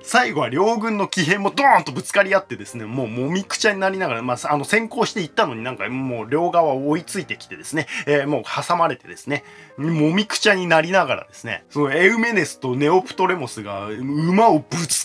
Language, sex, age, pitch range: Japanese, male, 20-39, 130-195 Hz